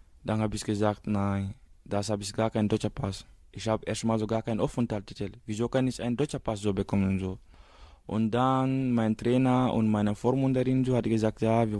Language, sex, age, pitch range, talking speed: German, male, 20-39, 105-125 Hz, 210 wpm